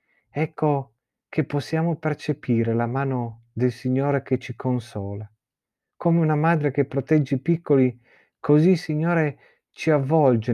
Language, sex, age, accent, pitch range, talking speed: Italian, male, 40-59, native, 115-150 Hz, 130 wpm